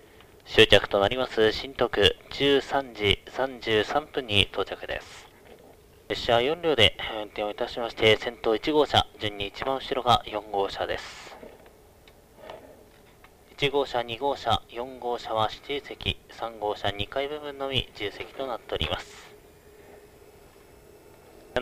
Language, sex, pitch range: Japanese, male, 105-140 Hz